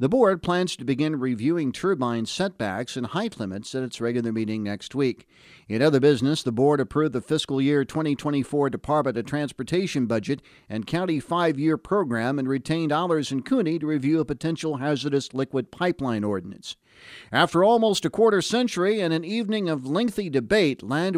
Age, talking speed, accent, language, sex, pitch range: 50-69, 170 wpm, American, English, male, 130-175 Hz